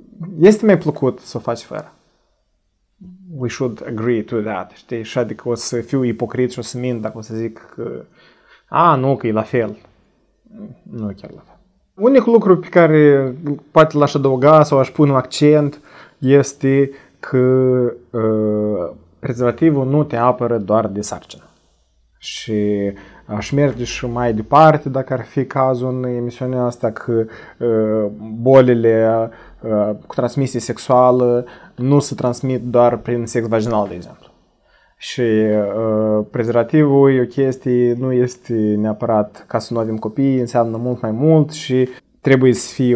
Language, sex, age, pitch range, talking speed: Romanian, male, 30-49, 110-135 Hz, 155 wpm